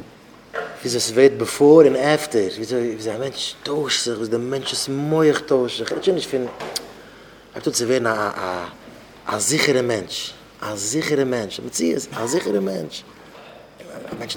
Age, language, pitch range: 20-39, English, 130-155 Hz